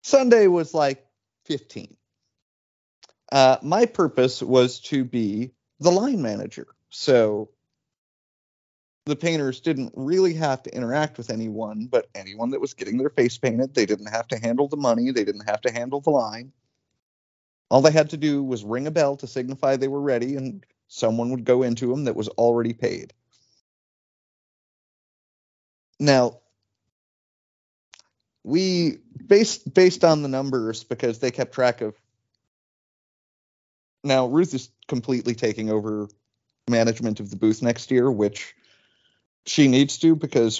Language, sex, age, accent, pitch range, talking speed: English, male, 30-49, American, 115-145 Hz, 145 wpm